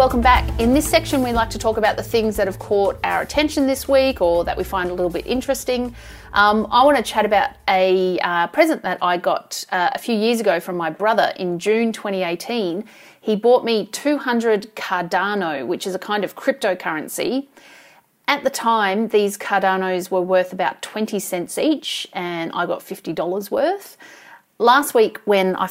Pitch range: 180-230 Hz